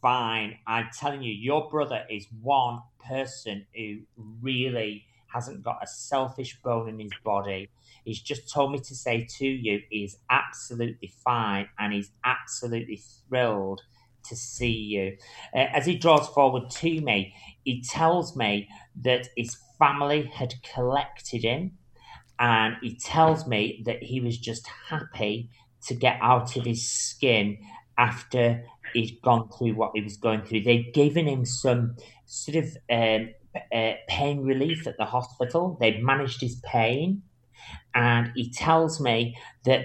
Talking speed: 150 wpm